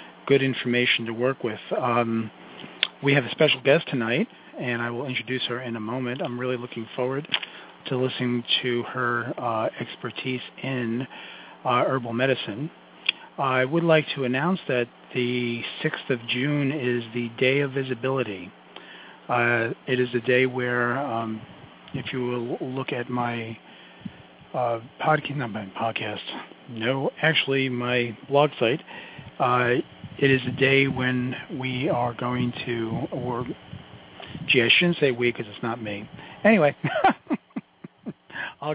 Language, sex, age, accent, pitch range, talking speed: English, male, 40-59, American, 115-135 Hz, 140 wpm